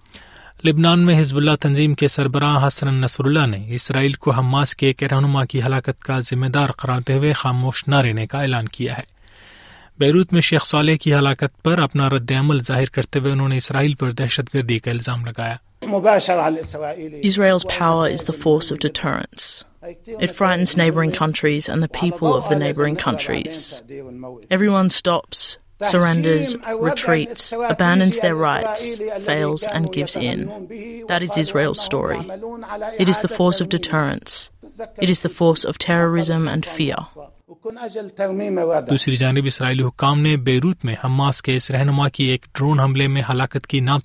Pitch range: 130-165 Hz